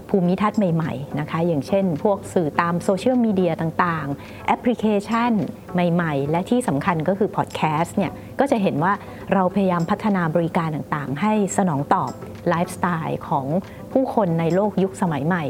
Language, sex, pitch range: Thai, female, 165-205 Hz